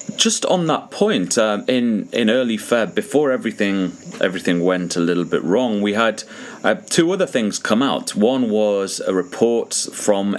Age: 30-49